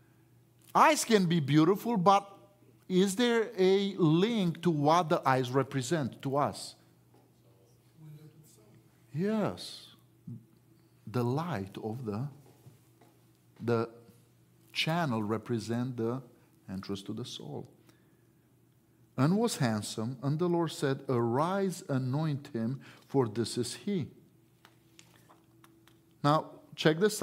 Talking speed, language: 100 wpm, English